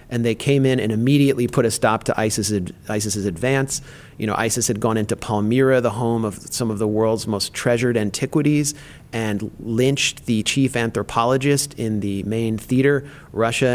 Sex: male